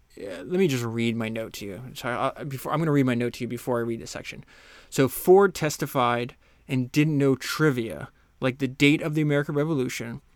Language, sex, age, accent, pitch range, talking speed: English, male, 20-39, American, 120-135 Hz, 210 wpm